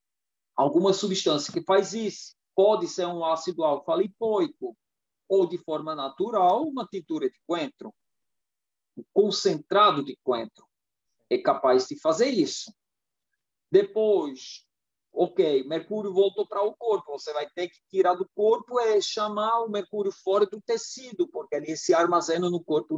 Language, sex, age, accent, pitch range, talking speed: Portuguese, male, 50-69, Brazilian, 180-245 Hz, 140 wpm